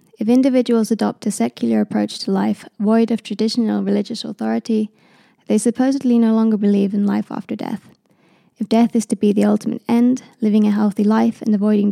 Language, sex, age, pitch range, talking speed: Finnish, female, 20-39, 210-230 Hz, 180 wpm